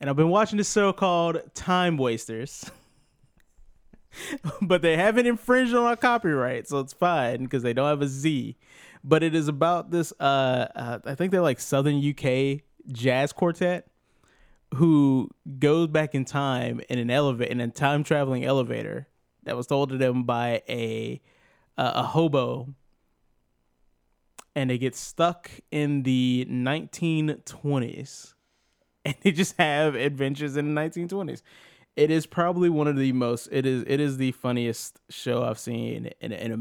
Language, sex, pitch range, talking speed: English, male, 120-150 Hz, 155 wpm